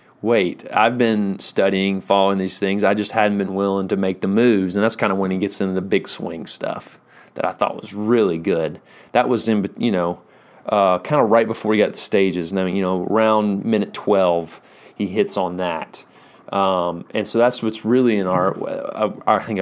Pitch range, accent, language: 95-115 Hz, American, English